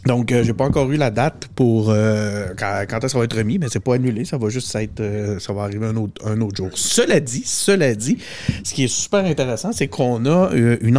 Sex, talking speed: male, 250 wpm